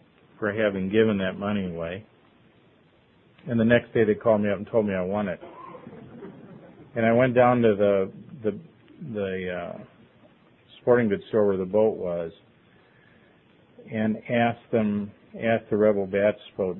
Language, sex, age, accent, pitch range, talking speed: English, male, 50-69, American, 95-110 Hz, 155 wpm